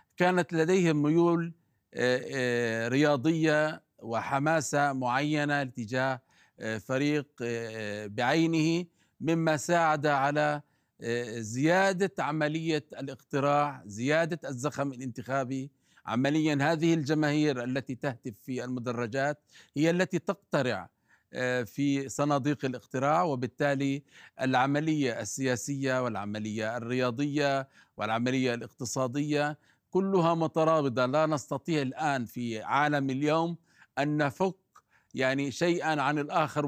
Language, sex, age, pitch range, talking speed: Arabic, male, 50-69, 125-155 Hz, 85 wpm